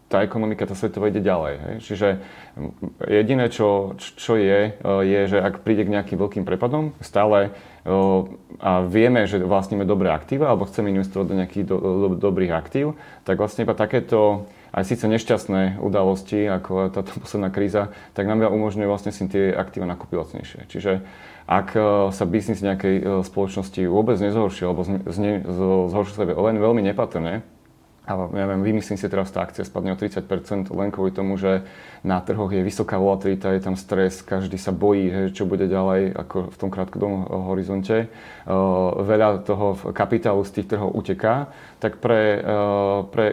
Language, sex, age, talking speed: Slovak, male, 30-49, 160 wpm